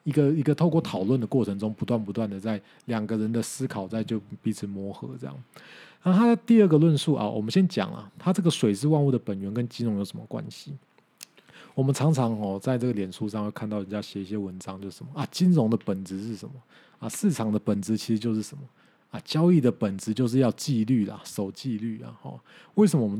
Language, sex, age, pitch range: Chinese, male, 20-39, 105-135 Hz